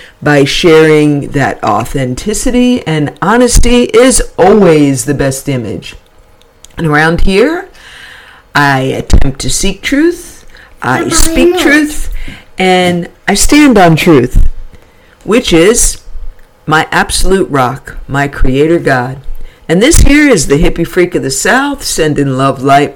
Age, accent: 50-69, American